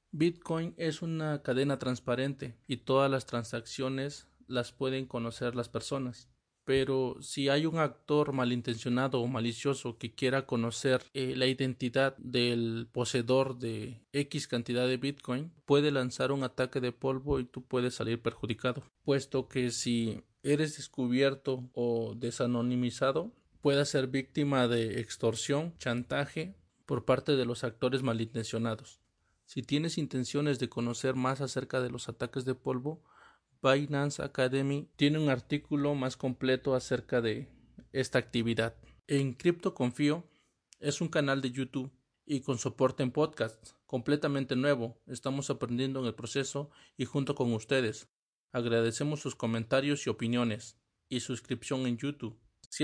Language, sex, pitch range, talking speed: English, male, 120-140 Hz, 135 wpm